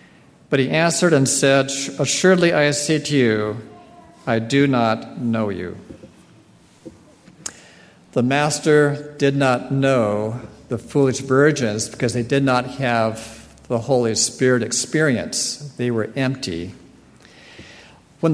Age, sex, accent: 50-69, male, American